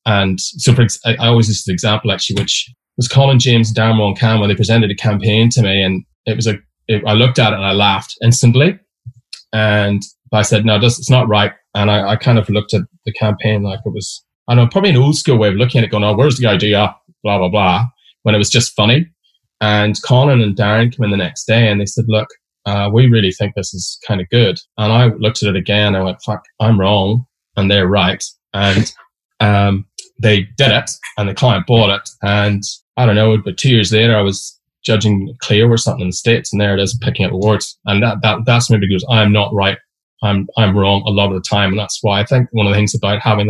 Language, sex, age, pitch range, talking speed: English, male, 20-39, 100-115 Hz, 250 wpm